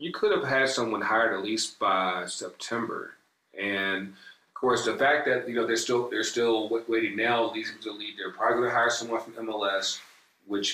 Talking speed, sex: 200 wpm, male